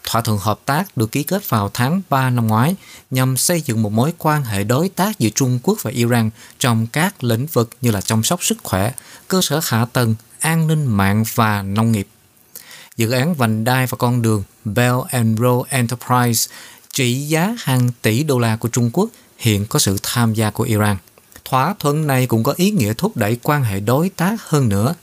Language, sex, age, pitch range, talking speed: Vietnamese, male, 20-39, 115-145 Hz, 210 wpm